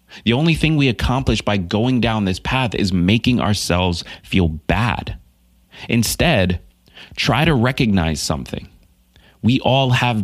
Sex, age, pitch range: male, 30-49, 85-115 Hz